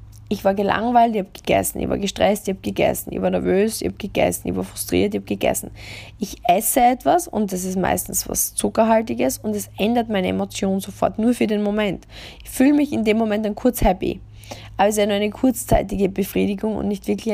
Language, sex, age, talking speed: German, female, 20-39, 220 wpm